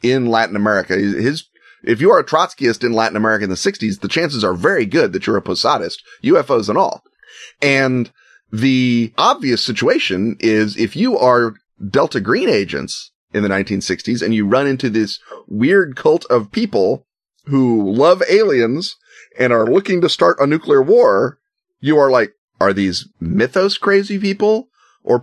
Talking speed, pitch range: 165 wpm, 105-135 Hz